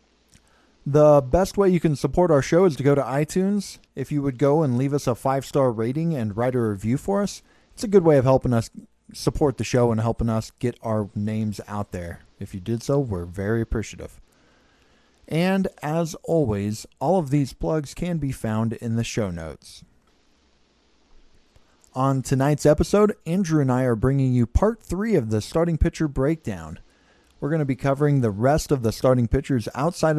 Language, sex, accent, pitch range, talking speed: English, male, American, 115-160 Hz, 190 wpm